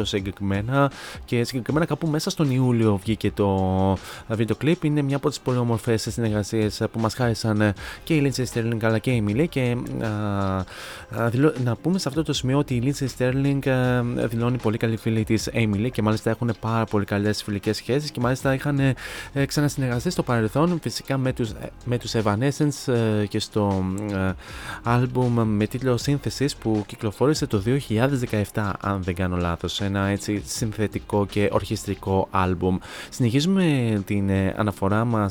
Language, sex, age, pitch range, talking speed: Greek, male, 20-39, 105-135 Hz, 160 wpm